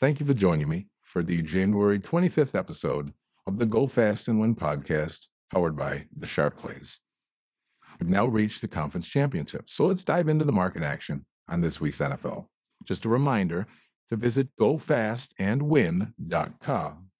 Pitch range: 95-140 Hz